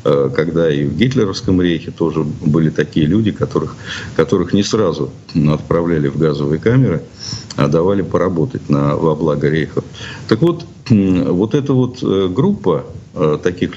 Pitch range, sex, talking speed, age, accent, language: 85-125 Hz, male, 130 wpm, 50-69, native, Russian